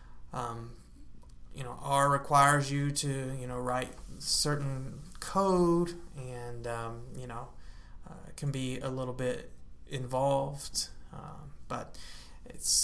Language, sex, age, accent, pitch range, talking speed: English, male, 20-39, American, 105-150 Hz, 120 wpm